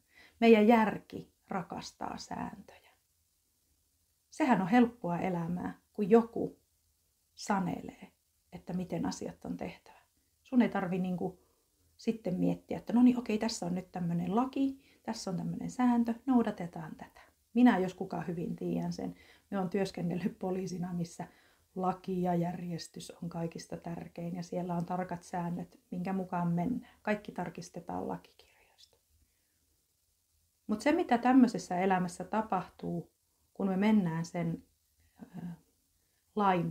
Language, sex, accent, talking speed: Finnish, female, native, 125 wpm